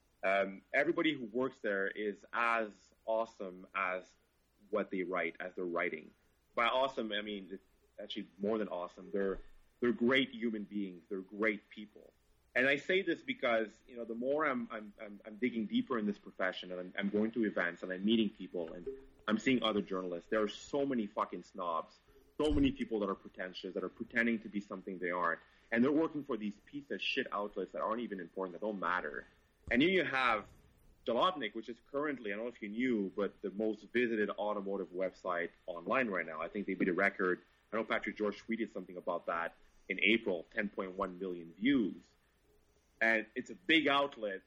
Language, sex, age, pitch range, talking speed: English, male, 30-49, 95-120 Hz, 200 wpm